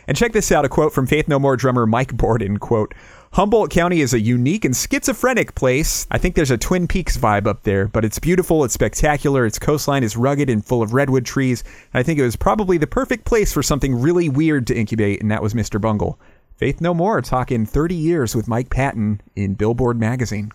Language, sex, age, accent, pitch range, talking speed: English, male, 30-49, American, 110-150 Hz, 220 wpm